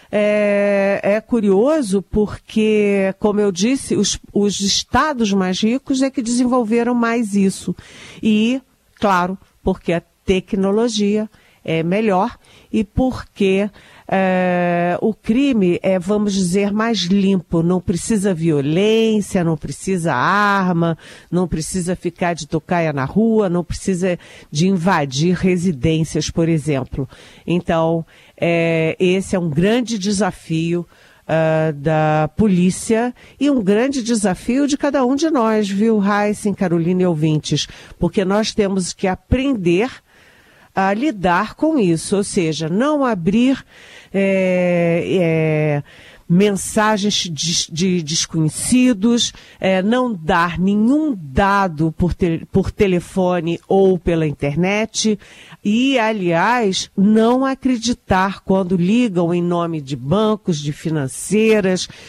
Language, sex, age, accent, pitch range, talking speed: Portuguese, female, 50-69, Brazilian, 175-220 Hz, 110 wpm